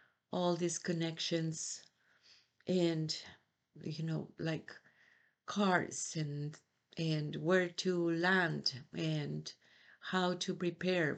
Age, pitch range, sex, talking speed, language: 50-69, 155-195 Hz, female, 90 wpm, English